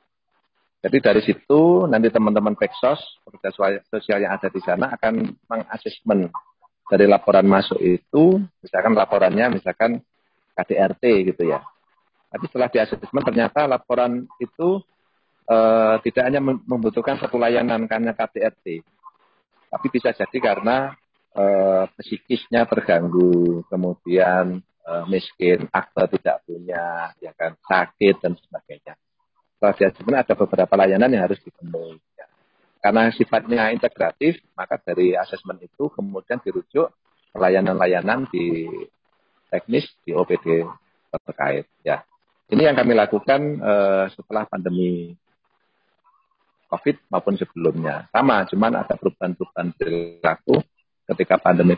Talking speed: 110 wpm